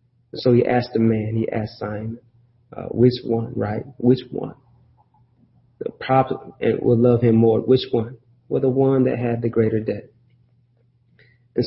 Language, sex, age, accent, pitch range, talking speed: English, male, 40-59, American, 115-125 Hz, 160 wpm